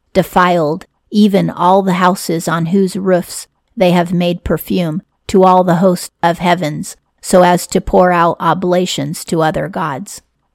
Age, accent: 40-59, American